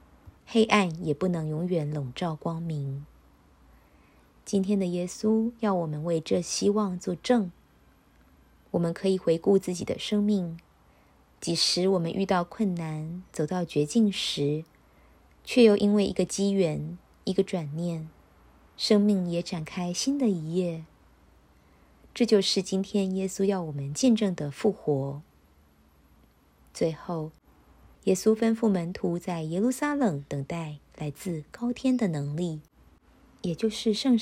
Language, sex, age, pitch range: Chinese, female, 20-39, 150-200 Hz